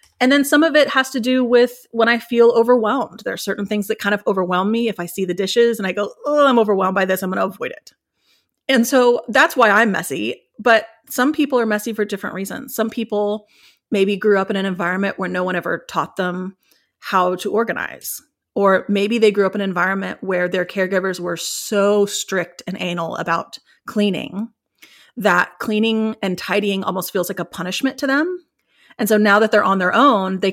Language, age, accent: English, 30-49, American